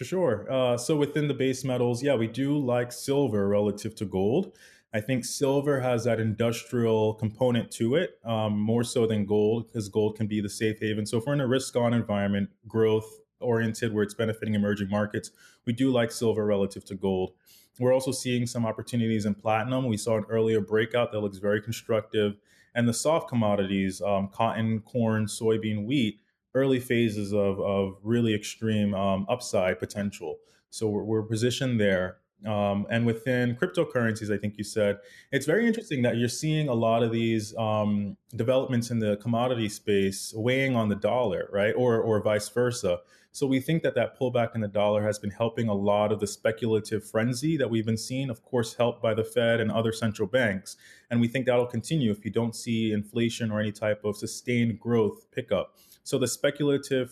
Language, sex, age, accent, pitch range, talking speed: English, male, 20-39, American, 105-120 Hz, 190 wpm